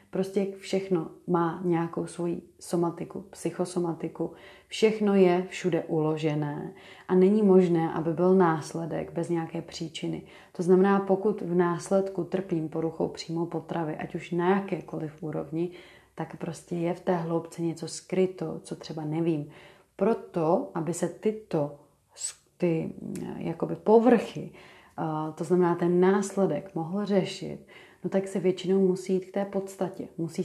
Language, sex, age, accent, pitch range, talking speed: Czech, female, 30-49, native, 165-190 Hz, 130 wpm